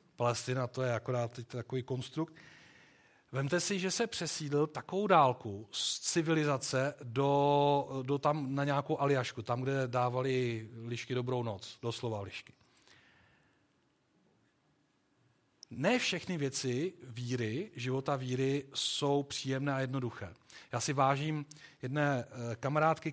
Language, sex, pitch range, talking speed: Czech, male, 130-160 Hz, 115 wpm